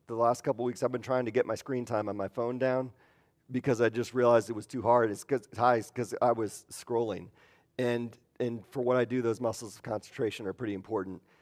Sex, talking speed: male, 225 wpm